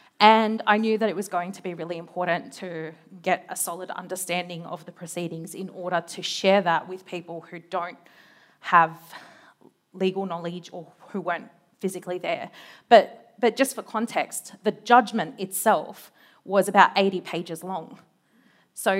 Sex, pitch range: female, 180-215 Hz